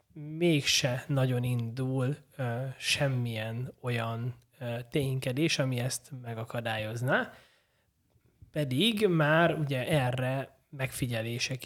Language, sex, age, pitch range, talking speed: Hungarian, male, 20-39, 120-145 Hz, 80 wpm